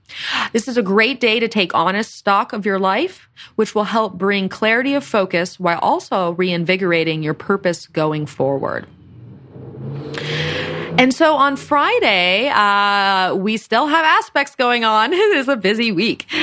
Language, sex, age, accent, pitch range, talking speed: English, female, 30-49, American, 170-230 Hz, 155 wpm